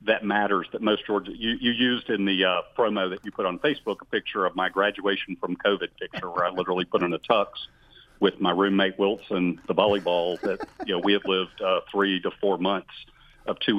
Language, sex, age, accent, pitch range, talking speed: English, male, 50-69, American, 95-110 Hz, 220 wpm